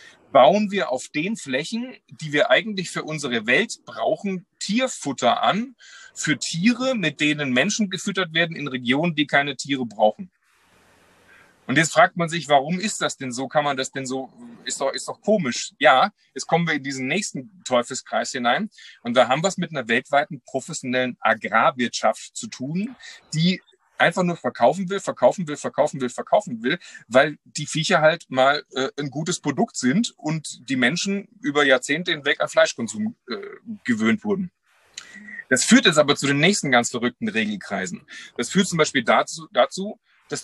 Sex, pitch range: male, 140-210 Hz